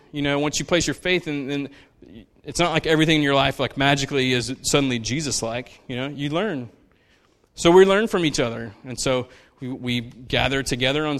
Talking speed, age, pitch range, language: 205 wpm, 20-39, 130-155 Hz, English